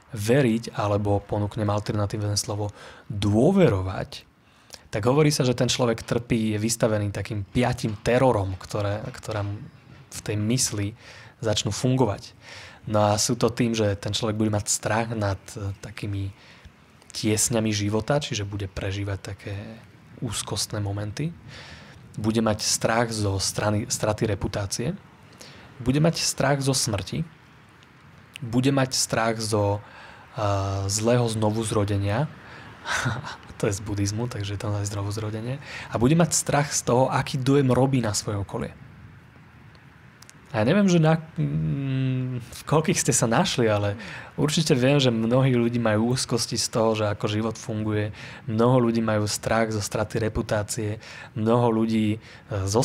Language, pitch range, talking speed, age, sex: Slovak, 105-130 Hz, 135 wpm, 20-39, male